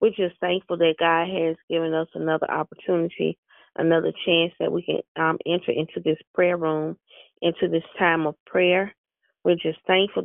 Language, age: English, 30-49